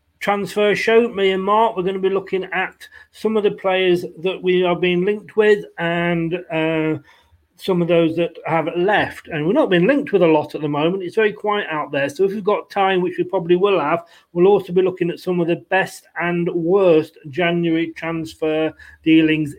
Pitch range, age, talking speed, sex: 160-200 Hz, 40-59, 210 wpm, male